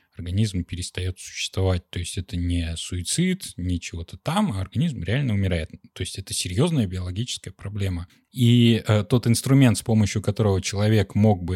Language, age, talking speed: Russian, 20-39, 160 wpm